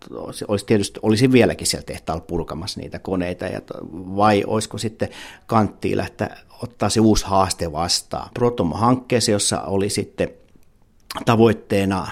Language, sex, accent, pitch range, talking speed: Finnish, male, native, 95-115 Hz, 120 wpm